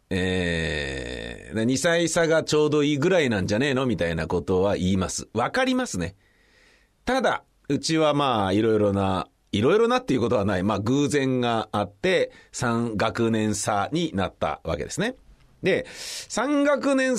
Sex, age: male, 40-59